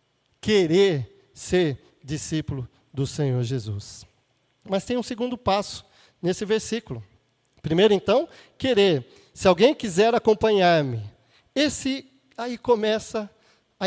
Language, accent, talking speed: Portuguese, Brazilian, 105 wpm